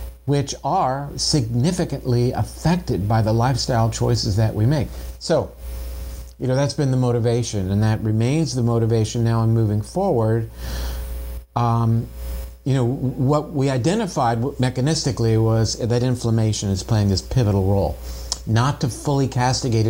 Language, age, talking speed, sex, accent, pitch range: English, 50-69, 140 wpm, male, American, 100-130 Hz